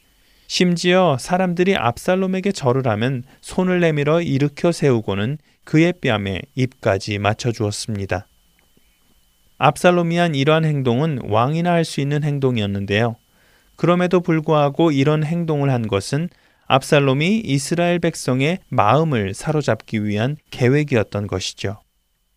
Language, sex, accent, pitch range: Korean, male, native, 115-170 Hz